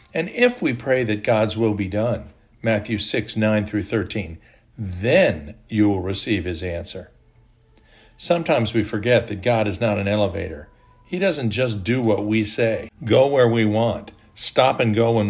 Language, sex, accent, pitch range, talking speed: English, male, American, 105-120 Hz, 175 wpm